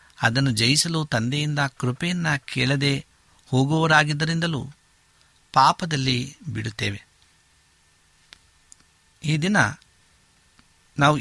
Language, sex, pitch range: Kannada, male, 105-140 Hz